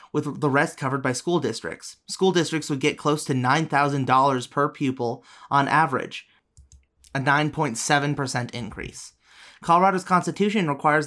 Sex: male